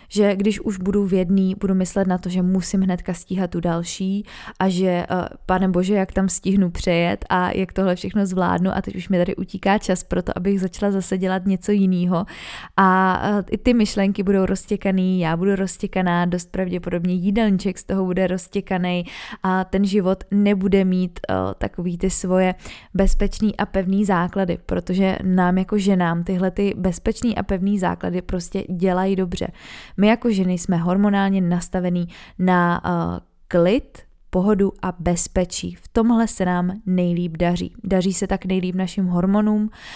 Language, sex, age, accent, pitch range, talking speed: Czech, female, 20-39, native, 180-200 Hz, 165 wpm